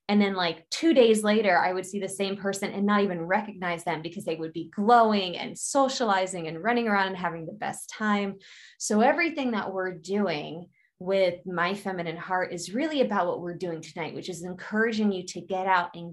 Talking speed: 210 wpm